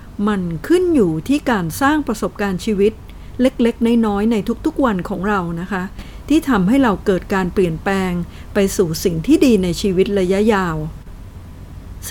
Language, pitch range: Thai, 185-240 Hz